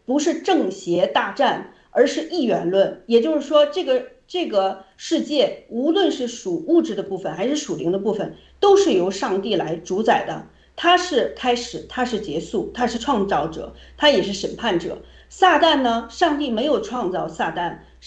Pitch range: 215-315 Hz